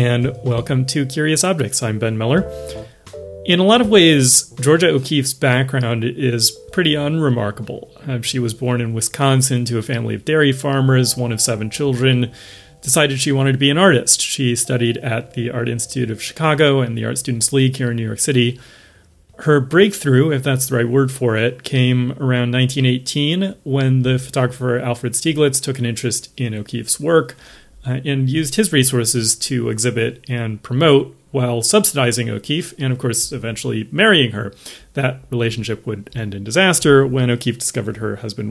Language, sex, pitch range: English, male, 115-140 Hz